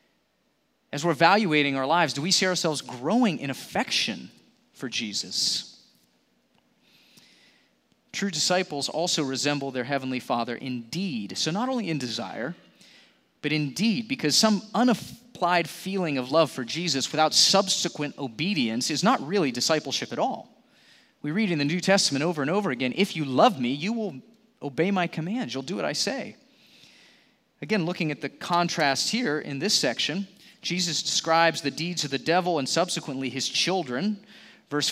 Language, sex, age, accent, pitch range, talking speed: English, male, 30-49, American, 145-195 Hz, 155 wpm